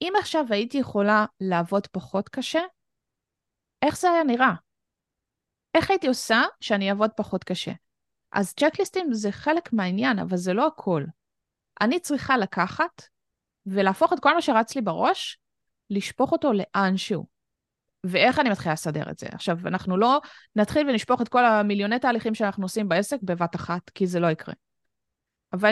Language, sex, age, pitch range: Hebrew, female, 20-39, 175-245 Hz